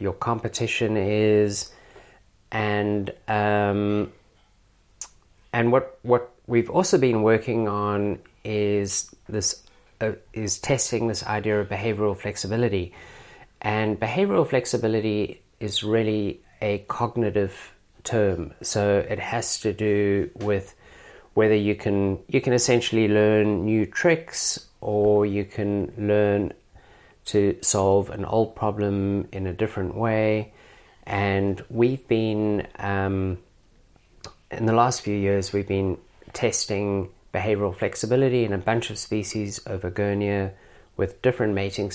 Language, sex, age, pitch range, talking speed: English, male, 30-49, 100-110 Hz, 120 wpm